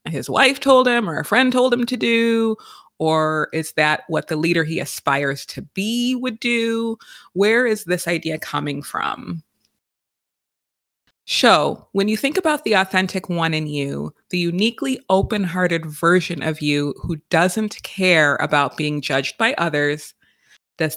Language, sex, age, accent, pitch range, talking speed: English, female, 20-39, American, 150-200 Hz, 155 wpm